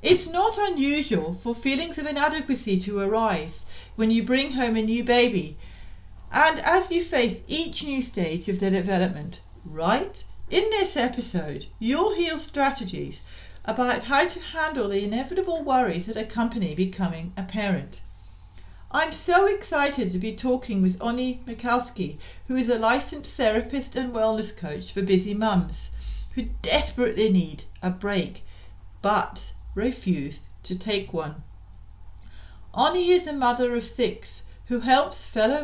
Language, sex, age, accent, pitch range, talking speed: English, female, 40-59, British, 175-255 Hz, 140 wpm